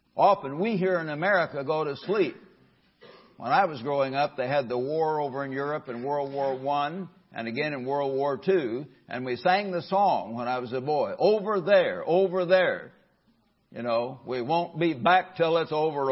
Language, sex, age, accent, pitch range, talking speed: English, male, 60-79, American, 140-185 Hz, 195 wpm